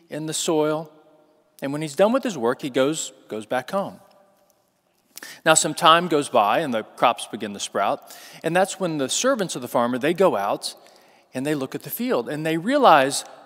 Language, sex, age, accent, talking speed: English, male, 40-59, American, 205 wpm